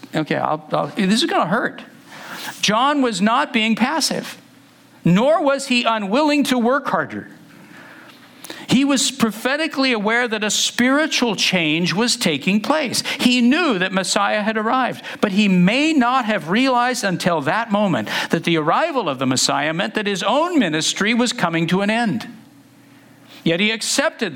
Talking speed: 155 wpm